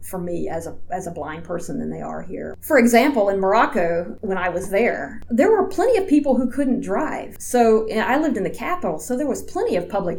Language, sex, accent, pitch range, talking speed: English, female, American, 180-230 Hz, 245 wpm